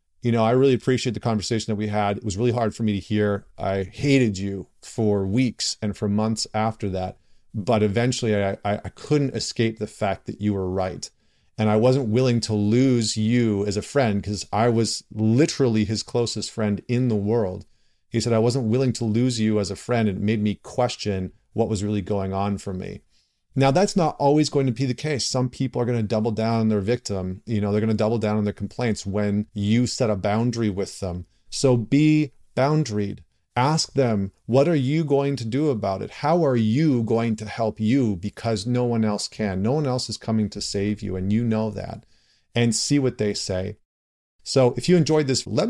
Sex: male